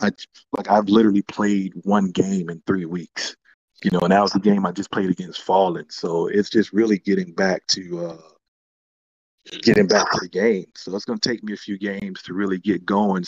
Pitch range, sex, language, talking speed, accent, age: 95-110 Hz, male, English, 215 wpm, American, 40-59